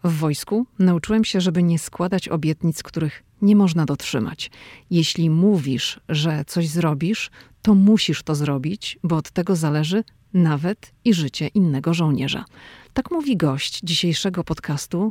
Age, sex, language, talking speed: 40-59, female, Polish, 140 wpm